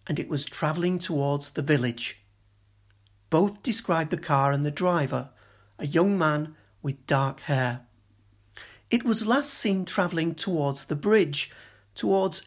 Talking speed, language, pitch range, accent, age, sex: 140 wpm, English, 125-175 Hz, British, 40-59, male